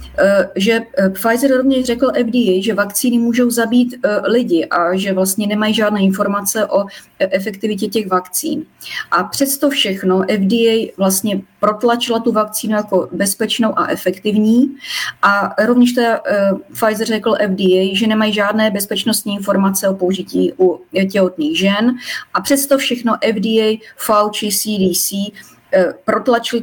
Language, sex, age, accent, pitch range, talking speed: Czech, female, 30-49, native, 185-220 Hz, 130 wpm